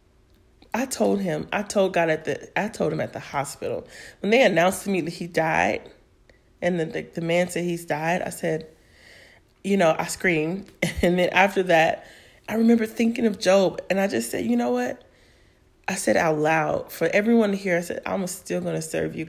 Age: 30-49